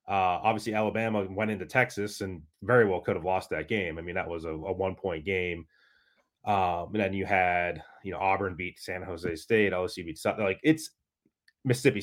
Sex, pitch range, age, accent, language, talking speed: male, 95-115 Hz, 30-49, American, English, 205 wpm